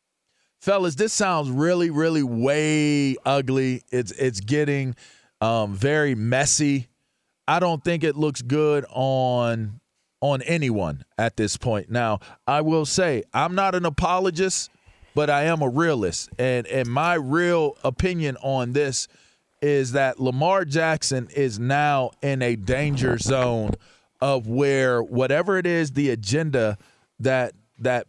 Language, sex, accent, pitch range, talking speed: English, male, American, 125-155 Hz, 135 wpm